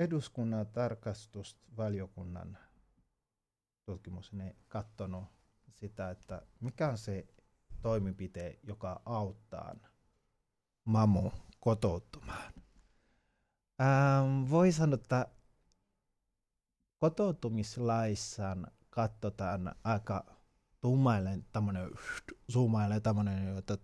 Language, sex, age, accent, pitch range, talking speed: Finnish, male, 30-49, native, 100-125 Hz, 55 wpm